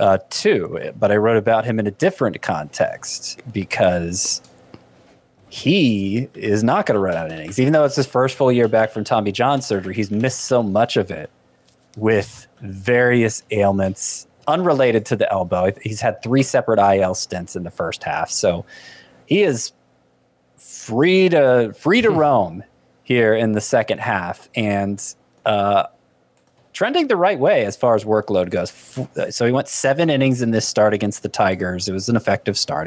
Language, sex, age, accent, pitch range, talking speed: English, male, 30-49, American, 95-130 Hz, 175 wpm